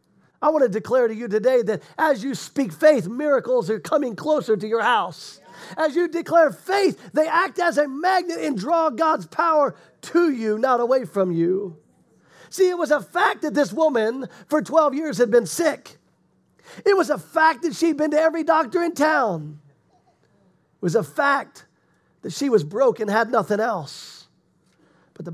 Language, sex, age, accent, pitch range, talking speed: English, male, 40-59, American, 225-315 Hz, 185 wpm